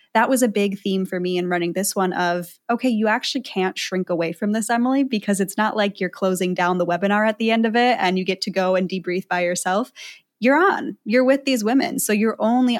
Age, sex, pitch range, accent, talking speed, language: 10-29, female, 185-225 Hz, American, 250 wpm, English